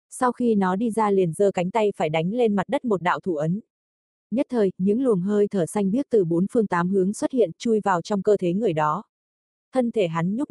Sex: female